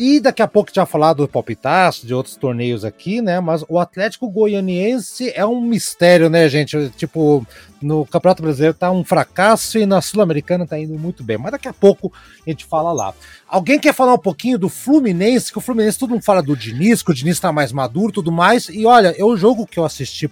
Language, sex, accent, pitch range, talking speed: Portuguese, male, Brazilian, 145-210 Hz, 225 wpm